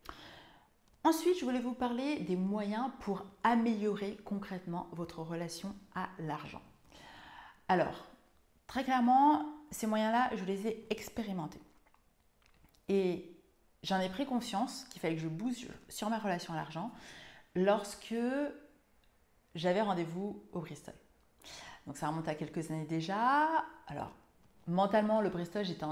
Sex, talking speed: female, 125 wpm